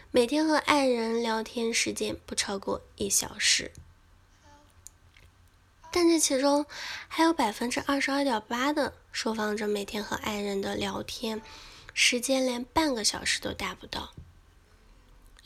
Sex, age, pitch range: female, 10-29, 205-270 Hz